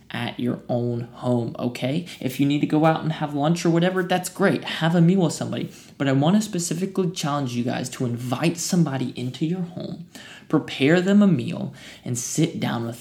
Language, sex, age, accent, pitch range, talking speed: English, male, 20-39, American, 130-175 Hz, 210 wpm